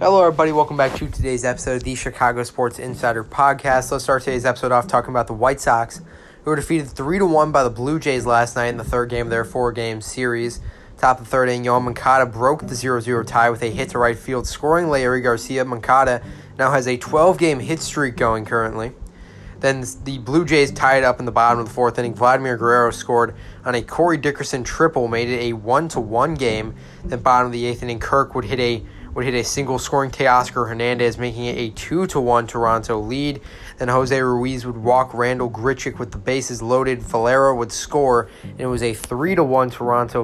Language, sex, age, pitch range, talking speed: English, male, 20-39, 120-135 Hz, 220 wpm